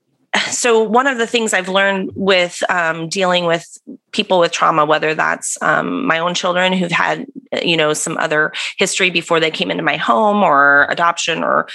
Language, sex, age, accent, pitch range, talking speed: English, female, 30-49, American, 160-195 Hz, 185 wpm